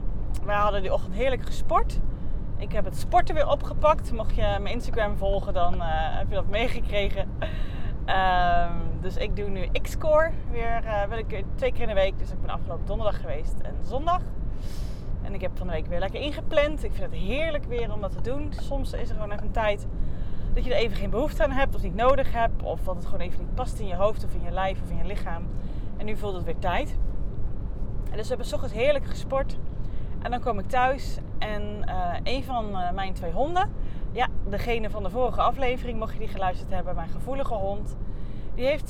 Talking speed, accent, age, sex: 215 wpm, Dutch, 30-49, female